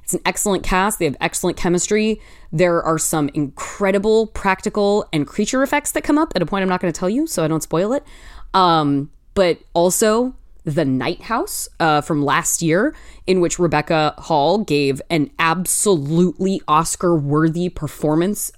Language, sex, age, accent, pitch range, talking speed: English, female, 20-39, American, 155-215 Hz, 170 wpm